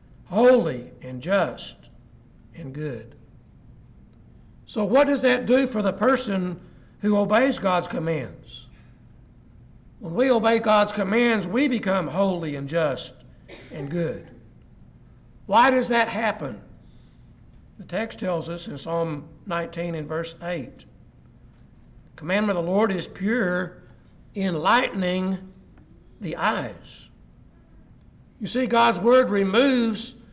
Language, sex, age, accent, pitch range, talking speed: English, male, 60-79, American, 170-220 Hz, 115 wpm